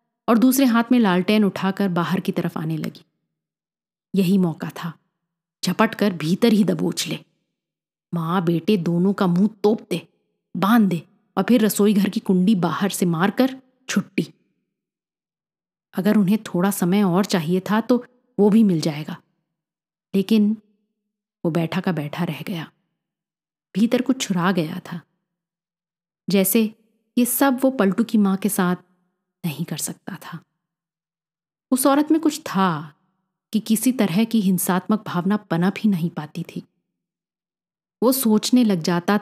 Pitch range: 175-215 Hz